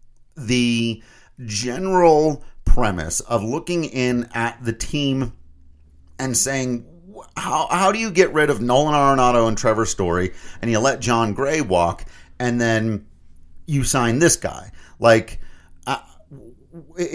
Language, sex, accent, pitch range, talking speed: English, male, American, 95-125 Hz, 130 wpm